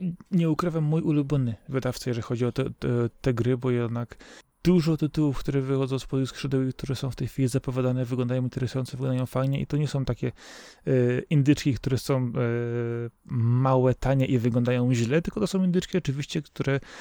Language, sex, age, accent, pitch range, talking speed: Polish, male, 20-39, native, 120-140 Hz, 190 wpm